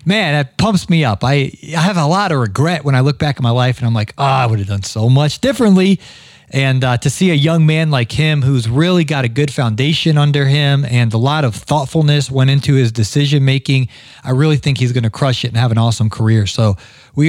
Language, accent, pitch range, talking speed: English, American, 125-165 Hz, 245 wpm